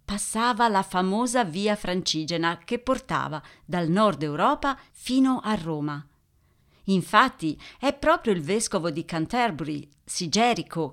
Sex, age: female, 40-59